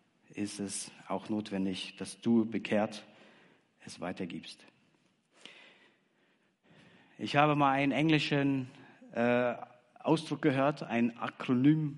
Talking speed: 95 wpm